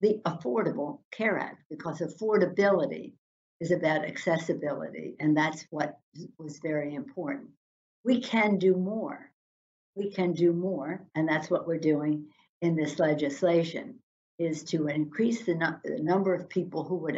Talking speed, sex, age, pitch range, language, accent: 145 wpm, female, 60-79, 150-175 Hz, English, American